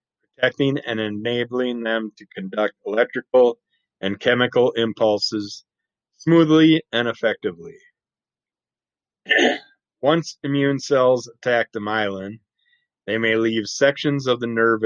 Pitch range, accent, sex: 105-130 Hz, American, male